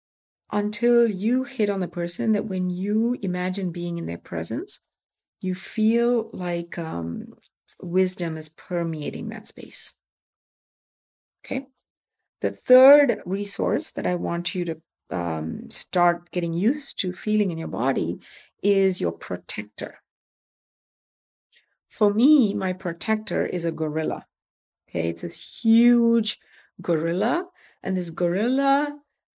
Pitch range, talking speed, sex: 175-225 Hz, 120 wpm, female